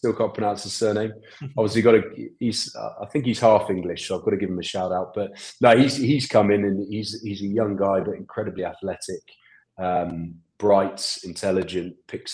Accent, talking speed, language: British, 210 wpm, English